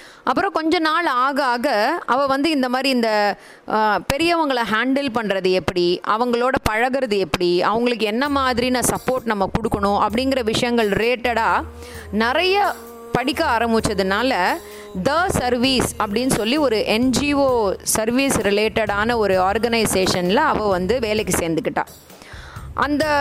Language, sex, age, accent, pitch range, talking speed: Tamil, female, 20-39, native, 215-280 Hz, 115 wpm